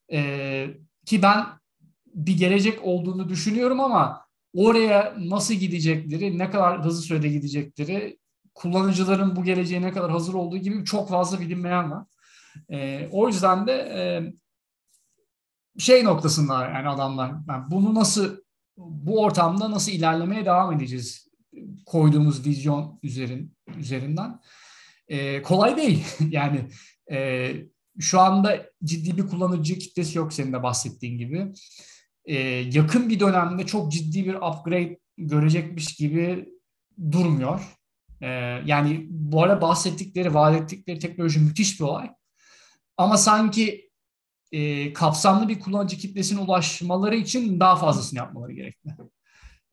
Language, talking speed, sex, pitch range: Turkish, 120 wpm, male, 150-195 Hz